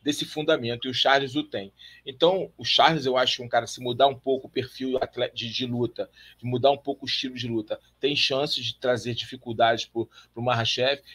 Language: Portuguese